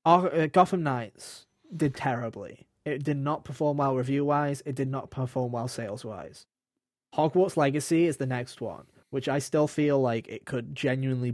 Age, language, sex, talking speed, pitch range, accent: 20-39, English, male, 170 wpm, 125-145 Hz, British